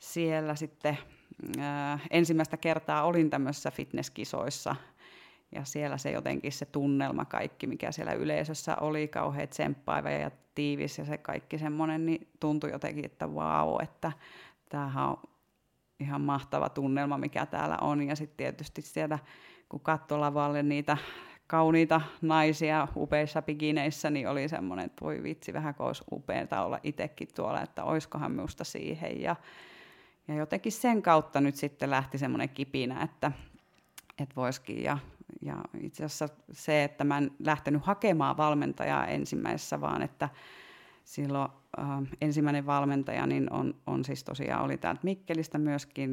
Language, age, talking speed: Finnish, 30-49, 140 wpm